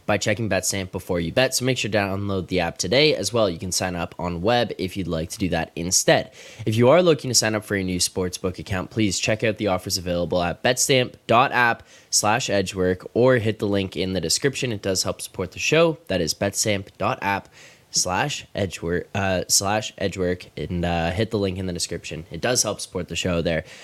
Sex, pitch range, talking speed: male, 95-115 Hz, 220 wpm